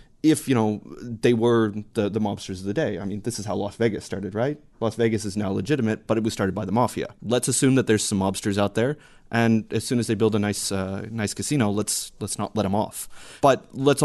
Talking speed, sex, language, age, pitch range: 250 wpm, male, English, 30-49, 100-115 Hz